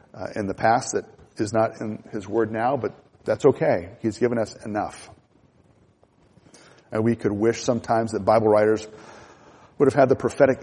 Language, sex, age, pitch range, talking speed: English, male, 40-59, 110-130 Hz, 175 wpm